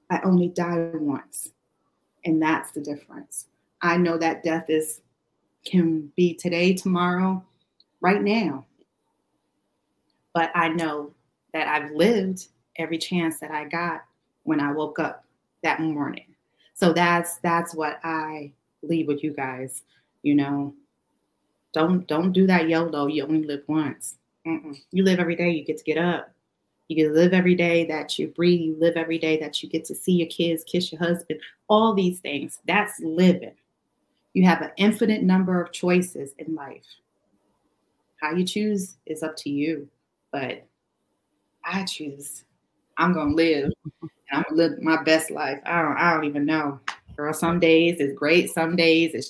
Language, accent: English, American